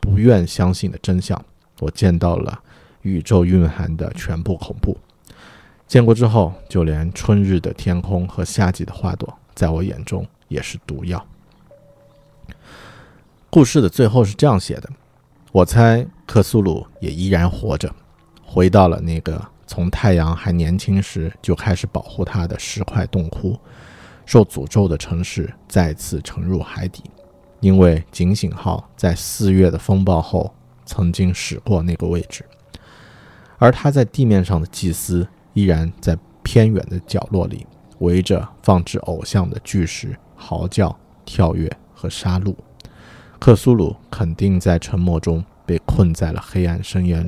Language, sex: Chinese, male